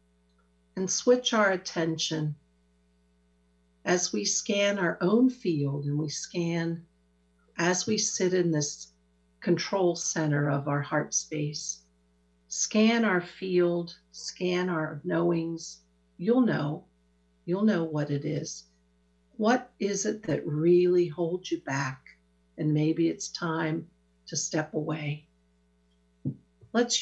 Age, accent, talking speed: 50-69, American, 120 wpm